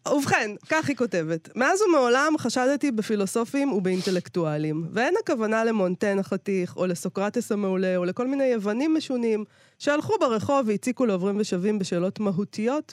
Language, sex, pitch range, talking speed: Hebrew, female, 185-250 Hz, 130 wpm